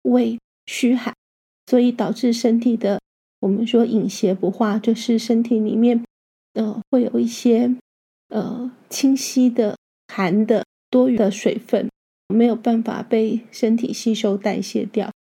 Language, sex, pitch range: Chinese, female, 215-235 Hz